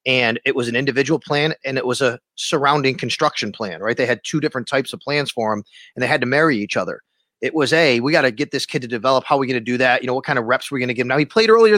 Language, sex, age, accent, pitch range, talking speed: English, male, 30-49, American, 130-190 Hz, 325 wpm